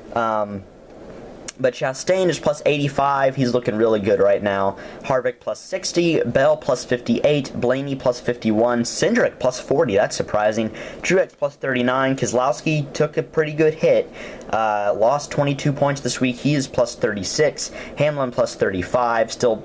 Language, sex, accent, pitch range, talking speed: English, male, American, 120-155 Hz, 150 wpm